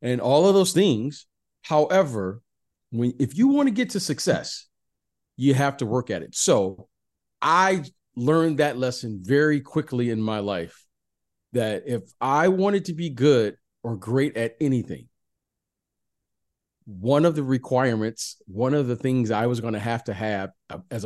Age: 40-59